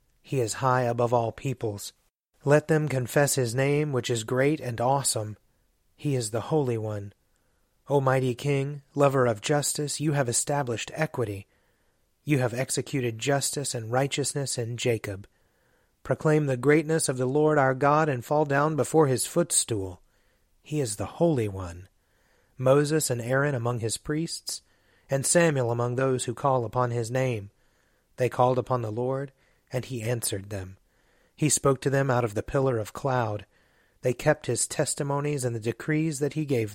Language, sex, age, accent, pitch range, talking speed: English, male, 30-49, American, 115-145 Hz, 165 wpm